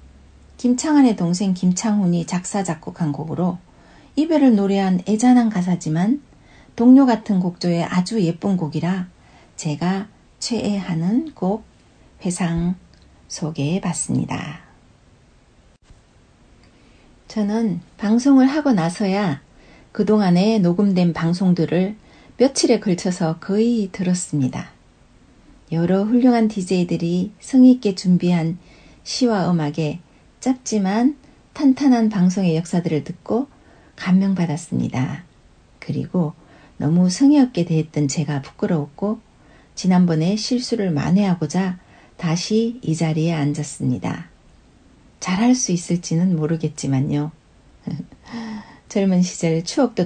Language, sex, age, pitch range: Korean, female, 60-79, 165-215 Hz